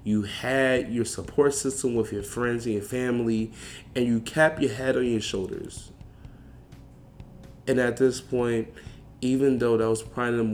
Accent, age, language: American, 20-39, English